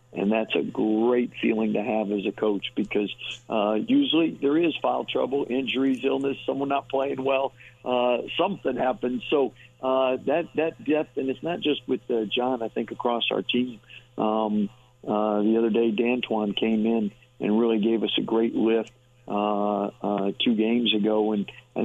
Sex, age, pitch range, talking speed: male, 50-69, 105-125 Hz, 180 wpm